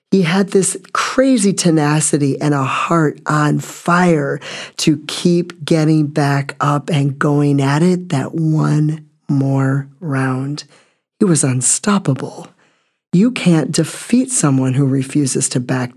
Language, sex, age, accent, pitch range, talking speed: English, male, 40-59, American, 135-165 Hz, 130 wpm